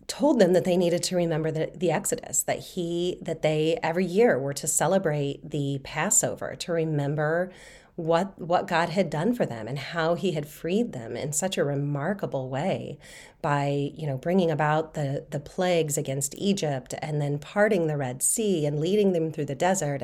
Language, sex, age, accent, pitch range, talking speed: English, female, 30-49, American, 150-195 Hz, 190 wpm